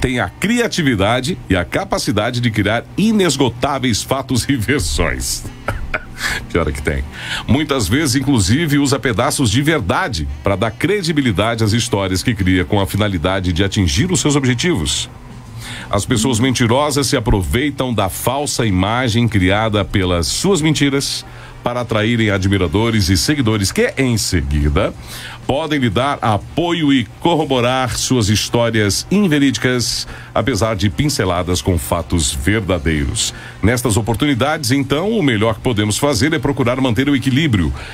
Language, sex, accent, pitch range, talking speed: Portuguese, male, Brazilian, 100-135 Hz, 135 wpm